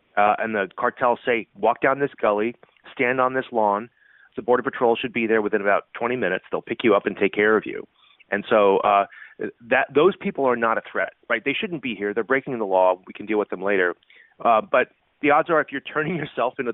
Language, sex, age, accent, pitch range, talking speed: English, male, 30-49, American, 105-135 Hz, 240 wpm